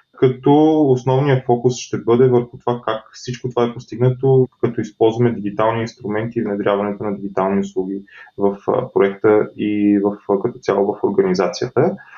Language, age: Bulgarian, 20-39